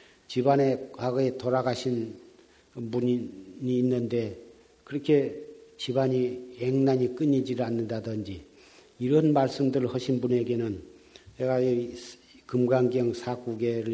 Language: Korean